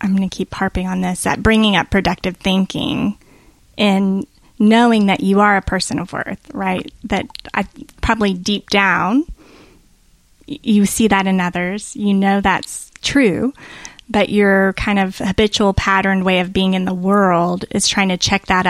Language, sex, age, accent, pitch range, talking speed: English, female, 20-39, American, 185-210 Hz, 170 wpm